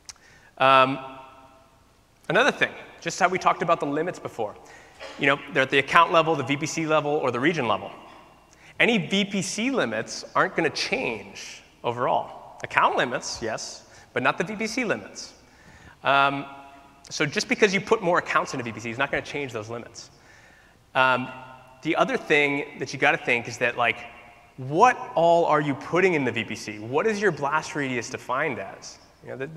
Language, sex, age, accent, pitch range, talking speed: English, male, 30-49, American, 120-155 Hz, 175 wpm